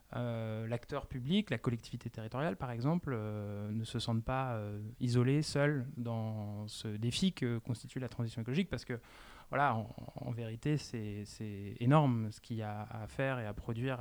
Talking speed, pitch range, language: 180 wpm, 110-135 Hz, French